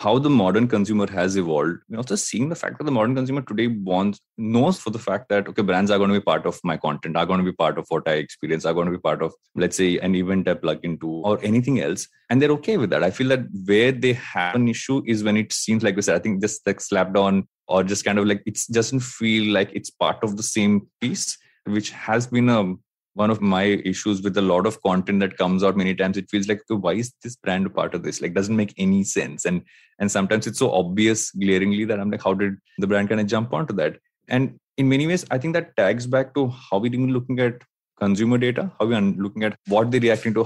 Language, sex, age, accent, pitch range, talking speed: English, male, 20-39, Indian, 95-120 Hz, 265 wpm